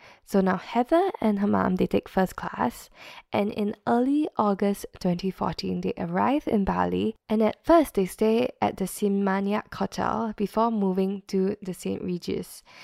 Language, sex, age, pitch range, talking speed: English, female, 10-29, 180-220 Hz, 160 wpm